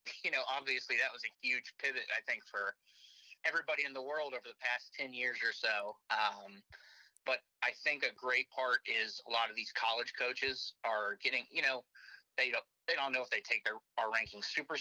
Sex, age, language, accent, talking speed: male, 30-49, English, American, 210 wpm